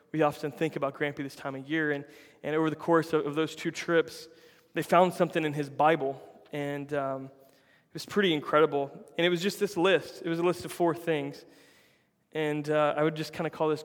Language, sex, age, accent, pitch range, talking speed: English, male, 20-39, American, 145-165 Hz, 230 wpm